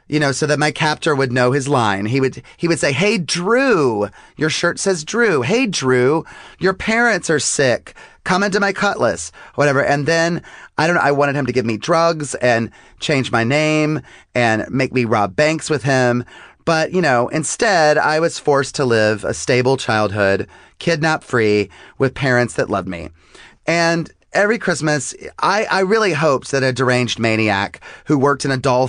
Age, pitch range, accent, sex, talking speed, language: 30-49, 120-155 Hz, American, male, 185 wpm, English